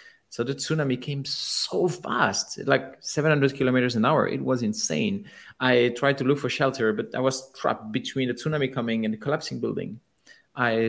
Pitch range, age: 115-155 Hz, 30-49